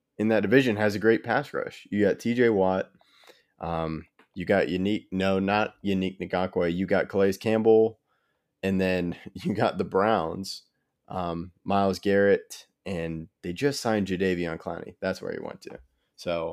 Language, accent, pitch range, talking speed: English, American, 90-105 Hz, 165 wpm